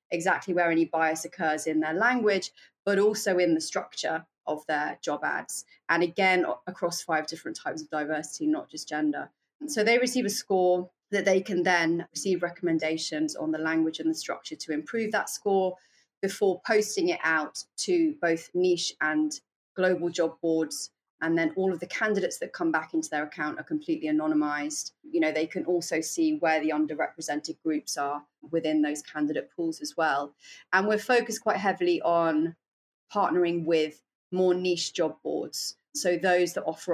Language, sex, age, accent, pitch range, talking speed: English, female, 30-49, British, 160-205 Hz, 175 wpm